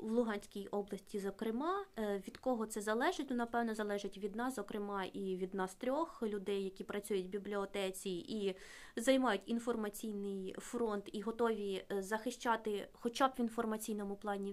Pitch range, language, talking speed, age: 205-250 Hz, Ukrainian, 150 wpm, 20-39